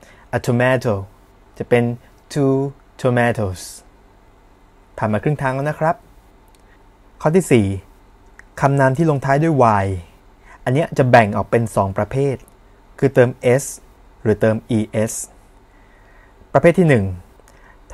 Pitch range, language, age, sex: 100-130 Hz, Thai, 20-39, male